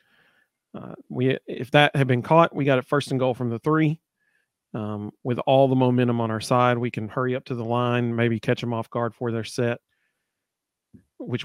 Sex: male